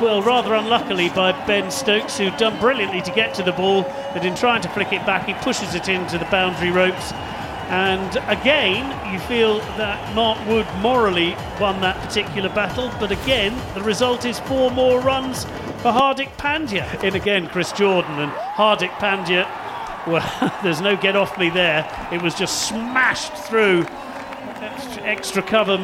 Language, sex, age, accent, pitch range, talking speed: English, male, 40-59, British, 175-215 Hz, 170 wpm